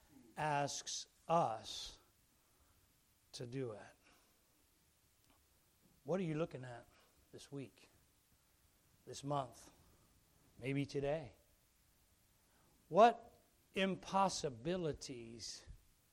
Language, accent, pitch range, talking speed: English, American, 125-150 Hz, 65 wpm